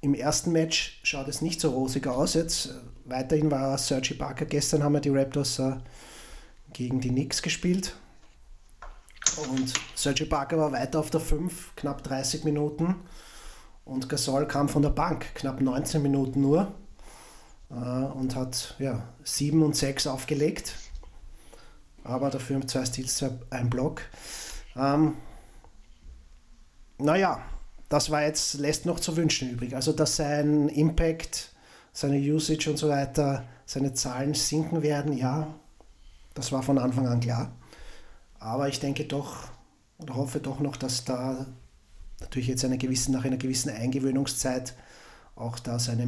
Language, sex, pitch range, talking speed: German, male, 130-150 Hz, 145 wpm